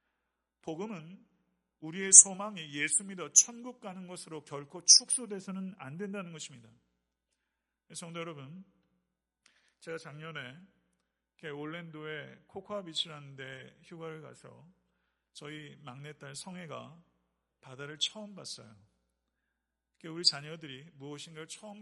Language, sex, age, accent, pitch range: Korean, male, 40-59, native, 130-175 Hz